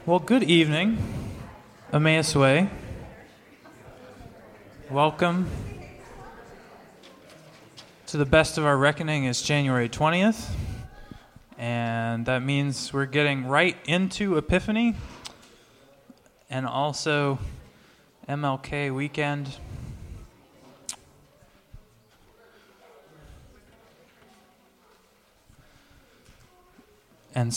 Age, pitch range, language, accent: 20-39, 120-150 Hz, English, American